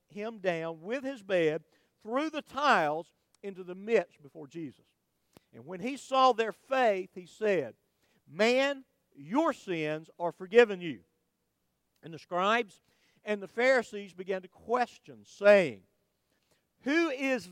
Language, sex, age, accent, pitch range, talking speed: English, male, 50-69, American, 175-245 Hz, 135 wpm